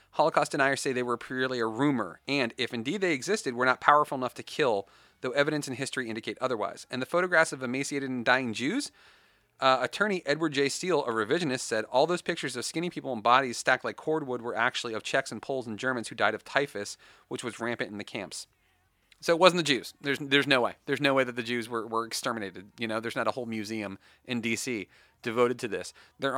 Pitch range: 115-140 Hz